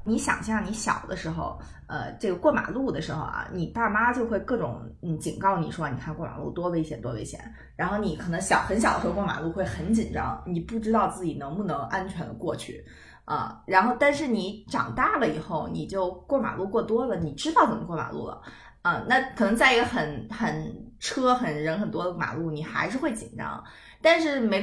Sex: female